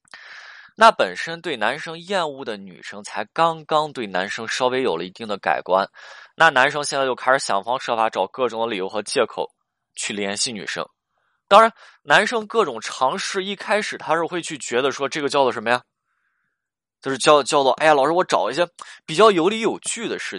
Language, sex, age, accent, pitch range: Chinese, male, 20-39, native, 115-180 Hz